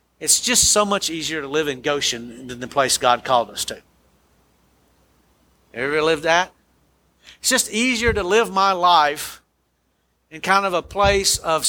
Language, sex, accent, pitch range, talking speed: English, male, American, 150-205 Hz, 165 wpm